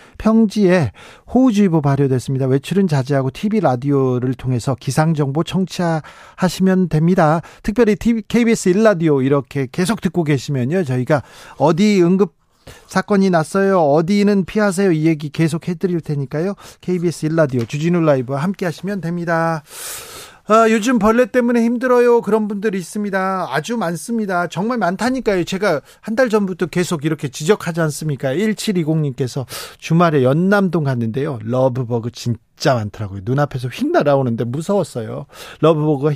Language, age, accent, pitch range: Korean, 40-59, native, 145-205 Hz